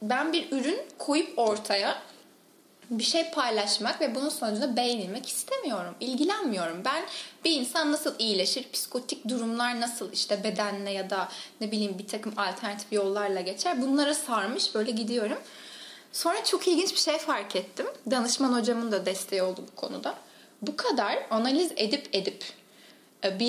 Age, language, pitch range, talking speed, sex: 10-29, Turkish, 225-295 Hz, 145 wpm, female